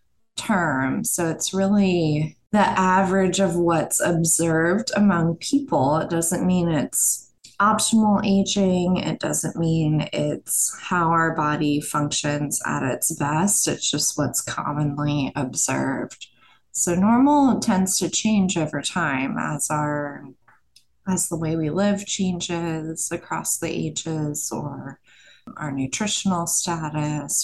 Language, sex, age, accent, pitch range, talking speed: English, female, 20-39, American, 150-195 Hz, 120 wpm